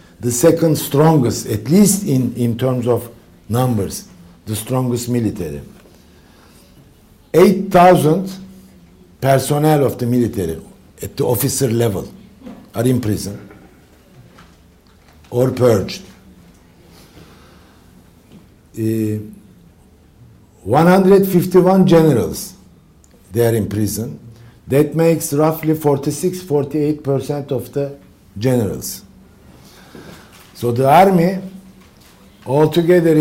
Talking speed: 80 wpm